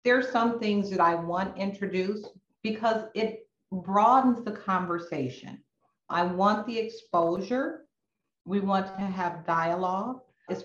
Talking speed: 130 wpm